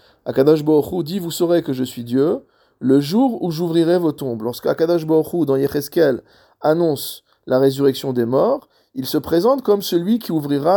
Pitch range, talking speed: 125-170 Hz, 175 wpm